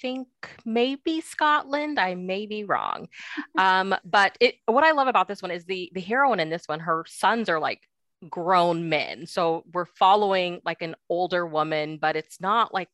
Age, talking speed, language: 20-39, 185 wpm, English